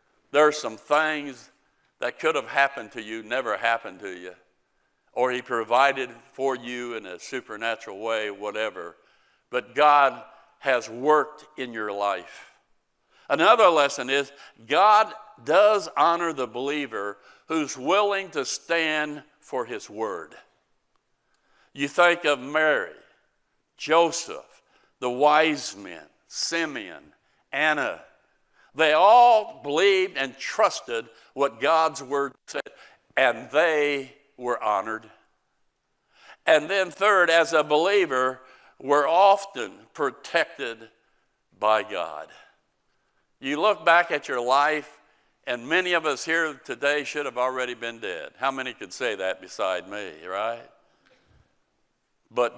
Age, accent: 60-79, American